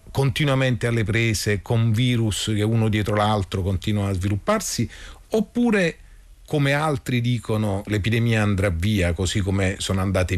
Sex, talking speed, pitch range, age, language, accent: male, 135 wpm, 85-120 Hz, 40-59, Italian, native